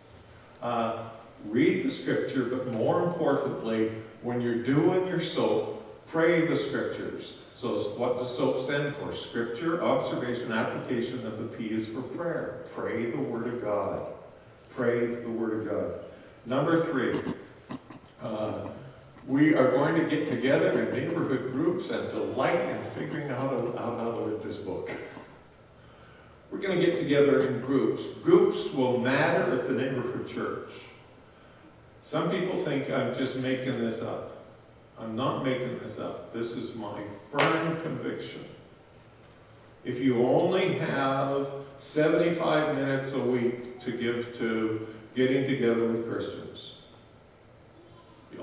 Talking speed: 140 wpm